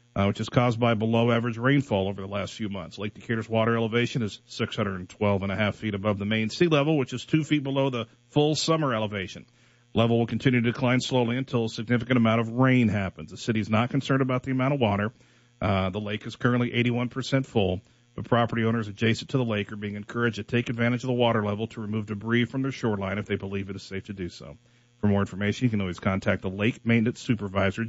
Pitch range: 105-130 Hz